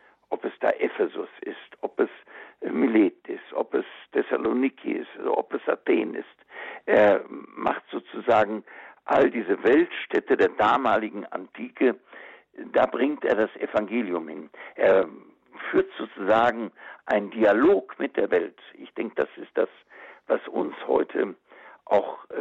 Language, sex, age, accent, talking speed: German, male, 60-79, German, 130 wpm